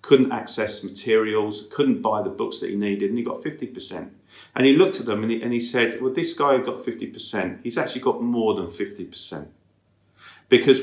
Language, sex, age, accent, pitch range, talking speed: English, male, 40-59, British, 100-135 Hz, 205 wpm